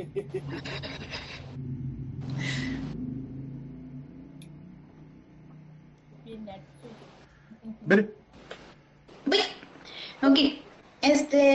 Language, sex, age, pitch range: Spanish, female, 30-49, 235-300 Hz